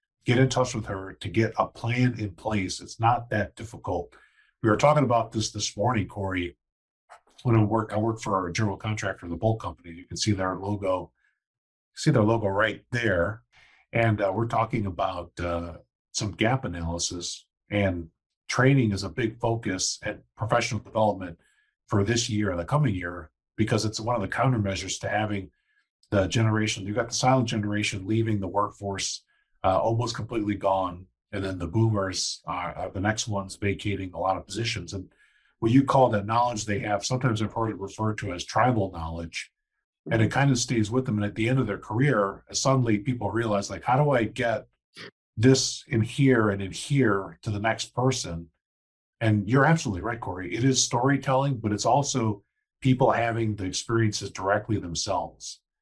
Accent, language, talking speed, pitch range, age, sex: American, English, 185 wpm, 95-120 Hz, 50-69, male